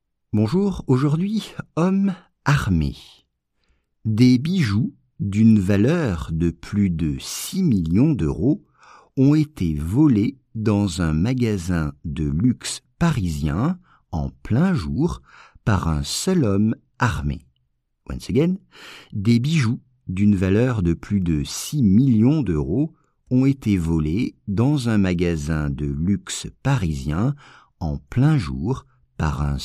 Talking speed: 115 wpm